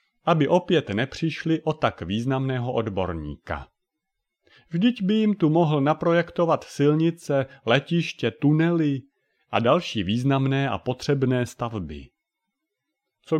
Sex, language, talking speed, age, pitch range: male, Czech, 105 wpm, 30-49, 110-150 Hz